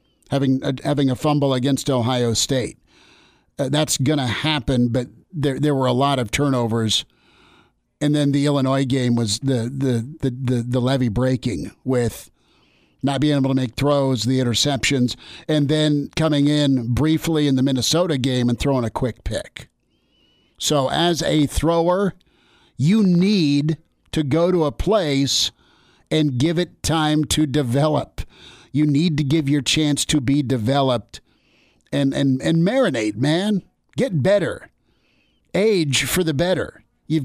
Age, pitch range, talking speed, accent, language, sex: 50-69, 130-155 Hz, 155 wpm, American, English, male